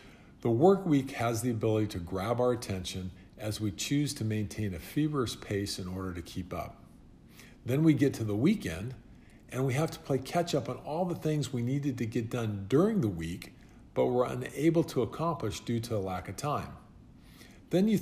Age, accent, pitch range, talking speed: 50-69, American, 100-140 Hz, 205 wpm